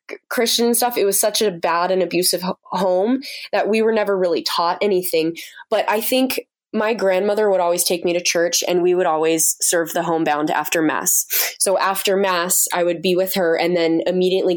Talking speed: 200 wpm